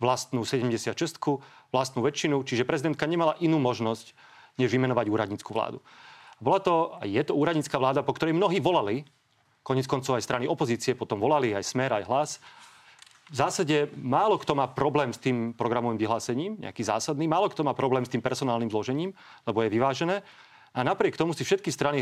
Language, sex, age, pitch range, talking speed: Slovak, male, 40-59, 120-145 Hz, 170 wpm